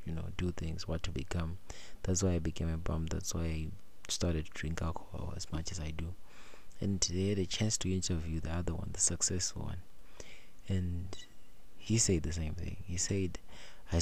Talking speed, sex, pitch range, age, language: 200 wpm, male, 85-100 Hz, 30-49, English